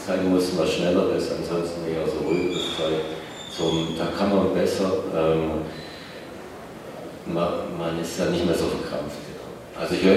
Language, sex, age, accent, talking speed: German, male, 40-59, German, 150 wpm